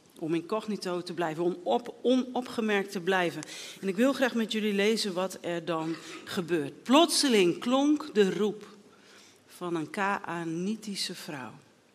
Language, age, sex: Dutch, 40-59, female